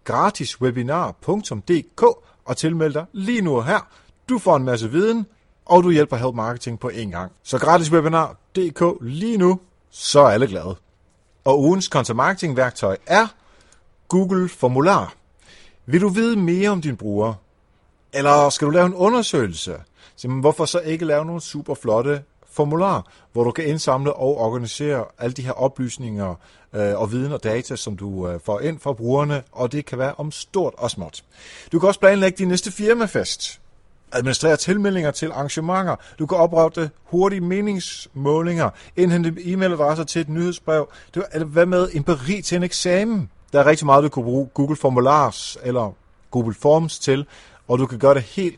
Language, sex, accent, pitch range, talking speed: Danish, male, native, 110-170 Hz, 165 wpm